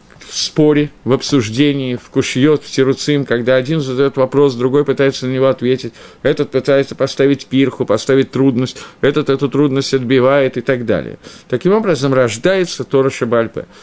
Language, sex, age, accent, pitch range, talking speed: Russian, male, 50-69, native, 120-155 Hz, 150 wpm